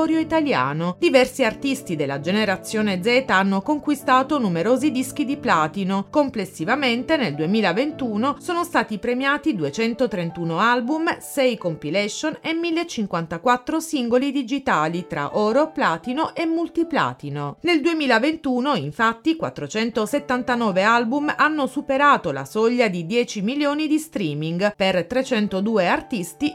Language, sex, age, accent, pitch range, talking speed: Italian, female, 40-59, native, 195-285 Hz, 110 wpm